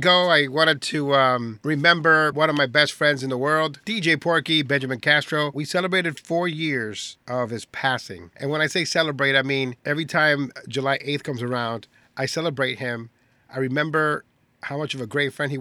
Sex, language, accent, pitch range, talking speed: male, English, American, 125-155 Hz, 190 wpm